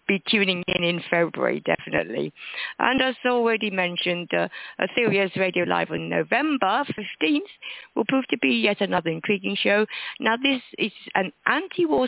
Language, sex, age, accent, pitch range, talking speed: English, female, 50-69, British, 180-250 Hz, 150 wpm